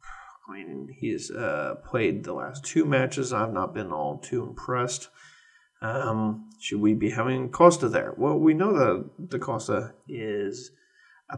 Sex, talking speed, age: male, 160 wpm, 30-49